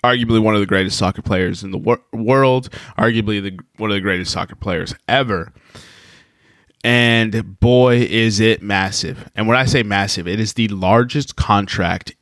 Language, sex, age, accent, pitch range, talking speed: English, male, 20-39, American, 100-125 Hz, 170 wpm